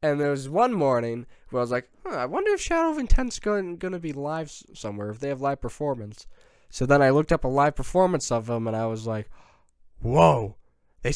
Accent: American